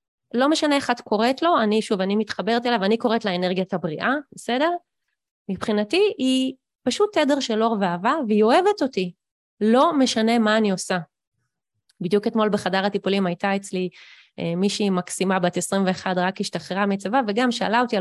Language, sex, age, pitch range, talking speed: Hebrew, female, 20-39, 190-260 Hz, 160 wpm